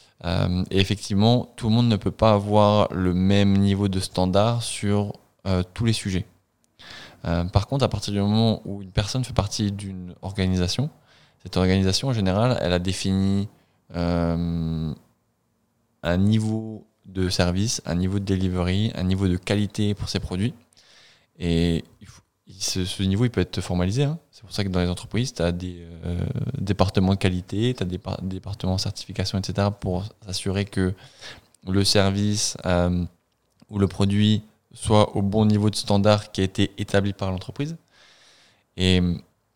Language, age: French, 20-39